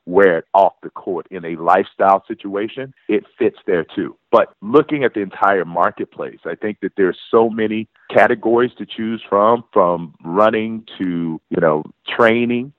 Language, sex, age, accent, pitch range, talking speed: English, male, 40-59, American, 95-115 Hz, 165 wpm